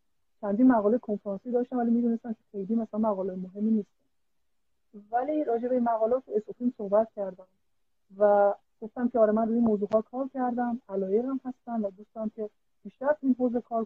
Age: 40-59